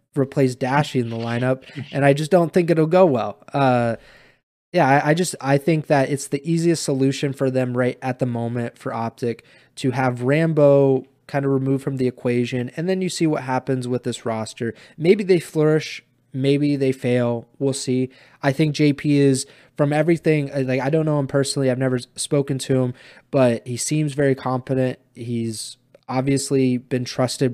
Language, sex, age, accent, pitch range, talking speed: English, male, 20-39, American, 125-145 Hz, 185 wpm